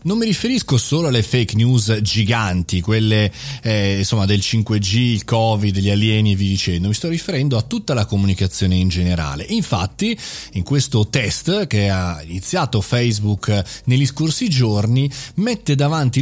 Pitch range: 100-145 Hz